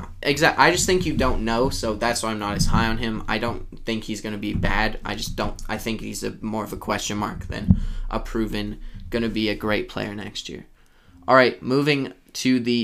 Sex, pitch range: male, 105-115 Hz